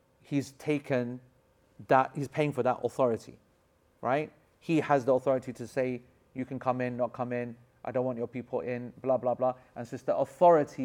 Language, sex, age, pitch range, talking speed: English, male, 40-59, 130-165 Hz, 200 wpm